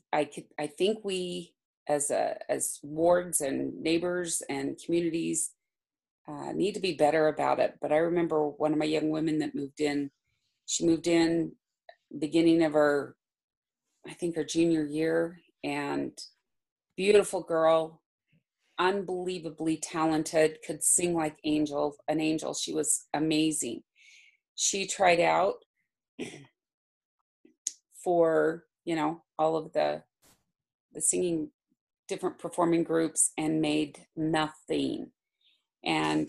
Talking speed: 120 wpm